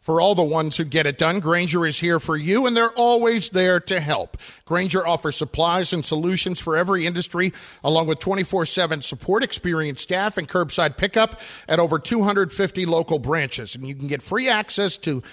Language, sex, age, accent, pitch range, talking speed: English, male, 50-69, American, 160-200 Hz, 190 wpm